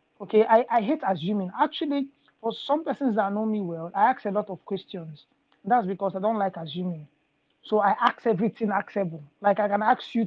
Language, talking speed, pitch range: English, 210 wpm, 190-235 Hz